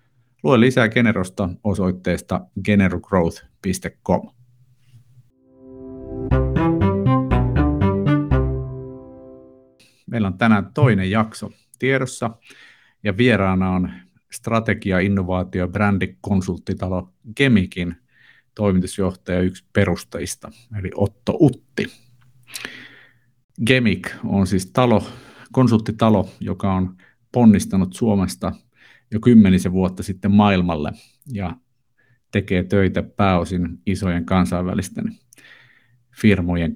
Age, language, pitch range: 50-69, Finnish, 95-120 Hz